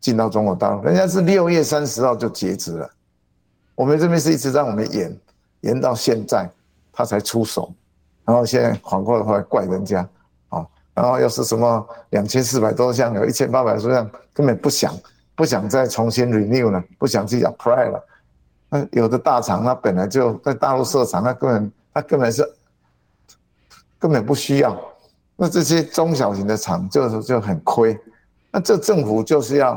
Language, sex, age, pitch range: Chinese, male, 60-79, 105-150 Hz